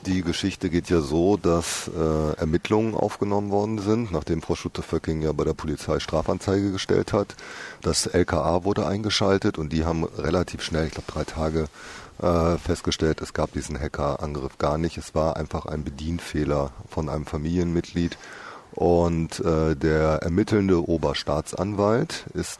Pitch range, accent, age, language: 80-95 Hz, German, 30-49, German